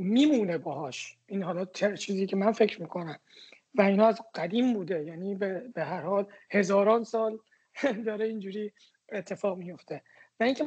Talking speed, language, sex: 145 wpm, Persian, male